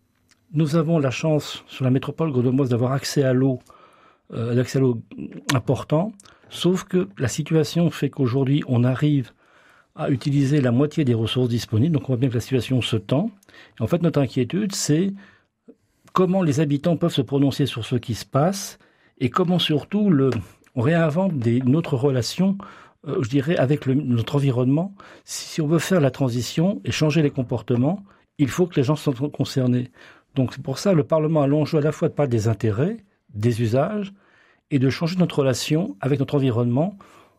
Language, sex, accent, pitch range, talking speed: French, male, French, 125-160 Hz, 190 wpm